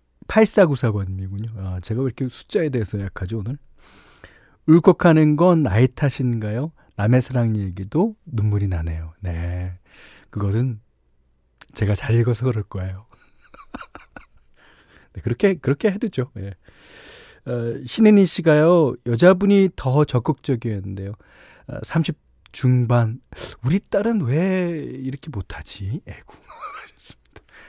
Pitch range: 95-155 Hz